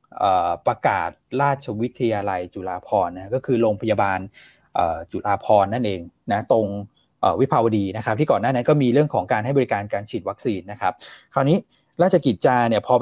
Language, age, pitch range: Thai, 20-39, 105-140 Hz